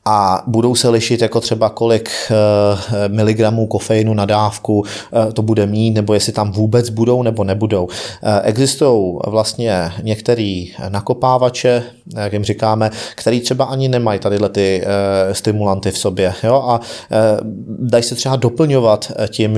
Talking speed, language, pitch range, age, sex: 135 wpm, Czech, 105-120 Hz, 30-49, male